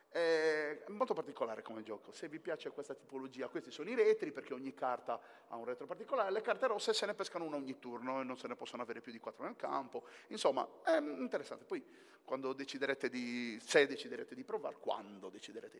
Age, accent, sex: 40-59, native, male